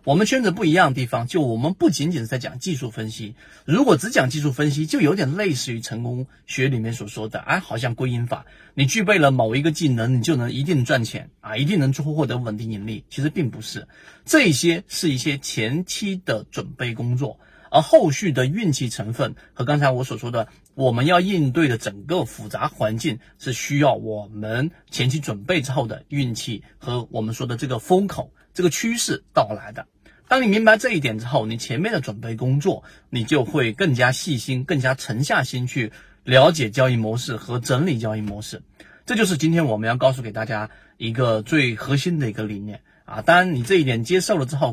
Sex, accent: male, native